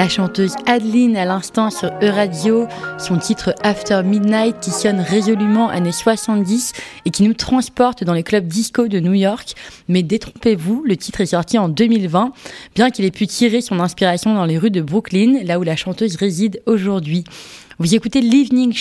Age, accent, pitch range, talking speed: 20-39, French, 180-230 Hz, 180 wpm